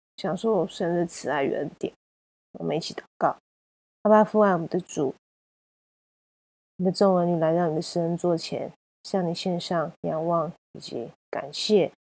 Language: Chinese